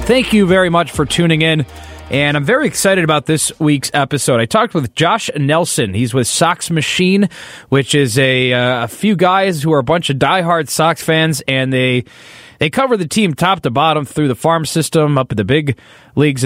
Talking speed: 210 wpm